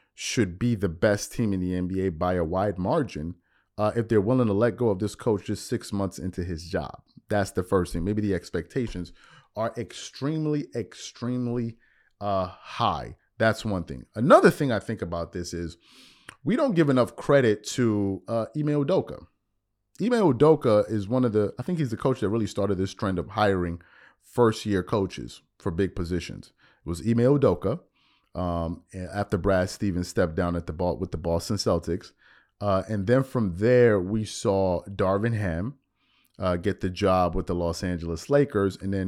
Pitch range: 90-110 Hz